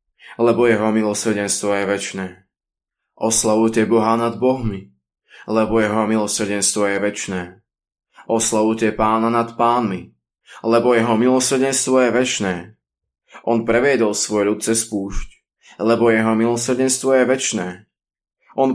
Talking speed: 110 wpm